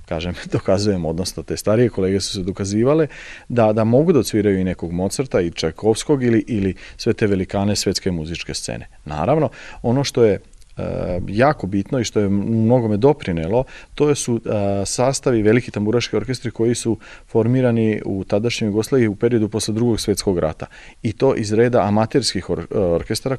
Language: Croatian